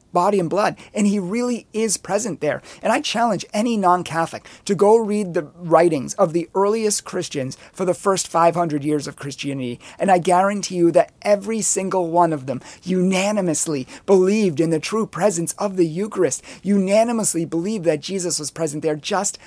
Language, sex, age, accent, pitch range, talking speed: English, male, 30-49, American, 155-200 Hz, 175 wpm